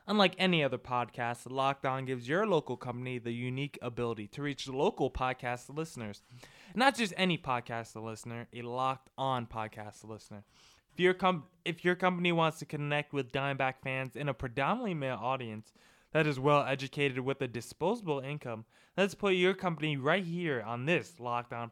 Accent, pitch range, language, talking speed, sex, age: American, 120-165 Hz, English, 160 wpm, male, 20-39